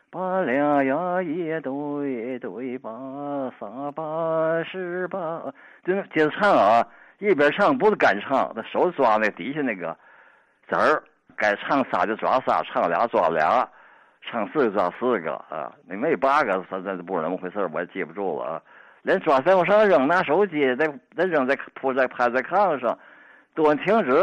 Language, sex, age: Chinese, male, 50-69